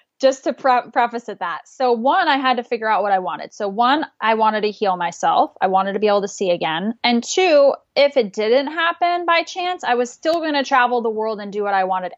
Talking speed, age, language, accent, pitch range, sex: 250 wpm, 10-29, English, American, 200-255 Hz, female